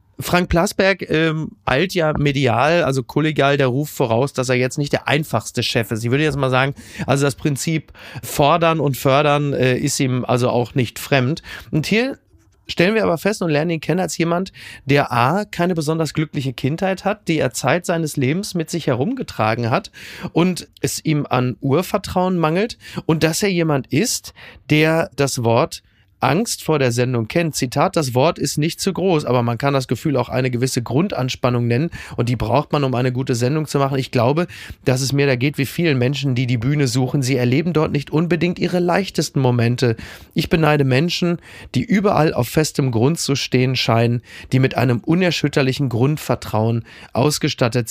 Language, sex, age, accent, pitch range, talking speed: German, male, 30-49, German, 125-165 Hz, 190 wpm